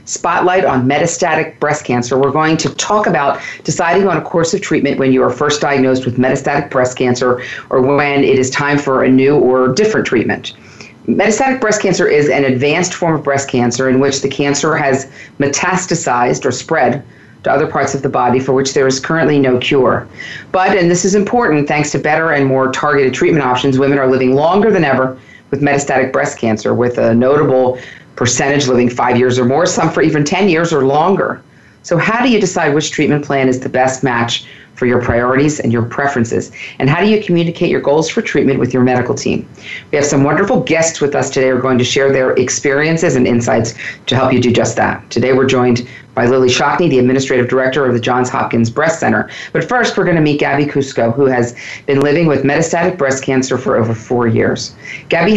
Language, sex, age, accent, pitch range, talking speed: English, female, 40-59, American, 125-150 Hz, 210 wpm